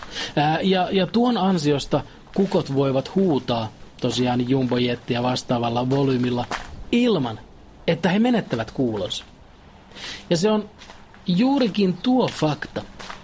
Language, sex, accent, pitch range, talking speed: Finnish, male, native, 125-160 Hz, 100 wpm